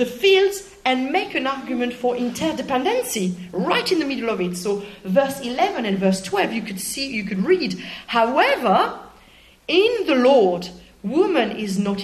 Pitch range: 185-270 Hz